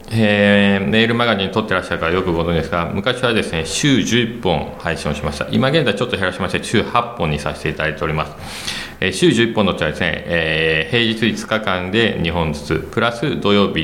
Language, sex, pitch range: Japanese, male, 75-105 Hz